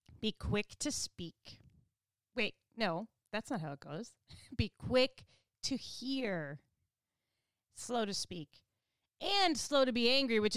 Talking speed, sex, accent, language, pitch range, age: 135 wpm, female, American, English, 175-270 Hz, 30-49